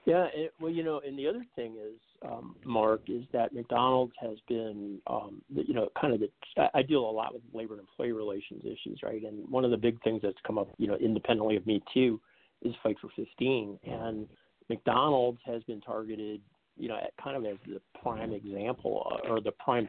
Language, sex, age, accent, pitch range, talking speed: English, male, 50-69, American, 100-120 Hz, 205 wpm